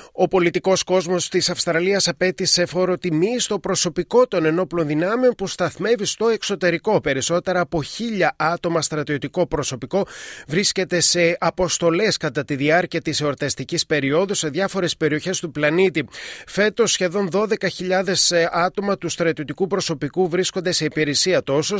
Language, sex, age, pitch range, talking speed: Greek, male, 30-49, 150-190 Hz, 130 wpm